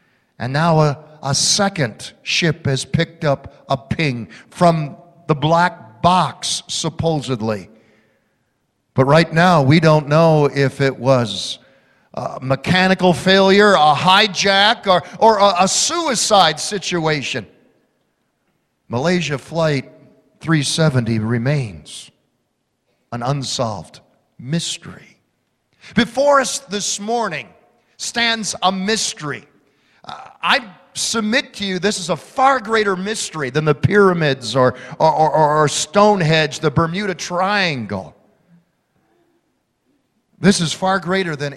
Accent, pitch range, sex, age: American, 135-185 Hz, male, 50-69